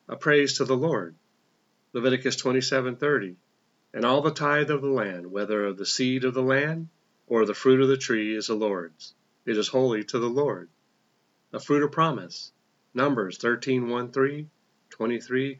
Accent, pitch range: American, 110-135 Hz